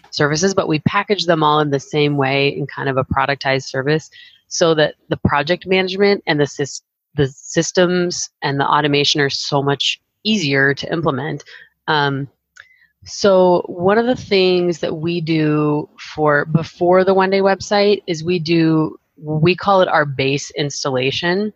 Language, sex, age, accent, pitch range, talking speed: English, female, 30-49, American, 140-170 Hz, 165 wpm